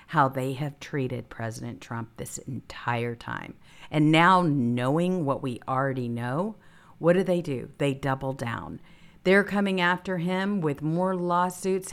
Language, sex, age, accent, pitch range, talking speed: English, female, 50-69, American, 145-200 Hz, 150 wpm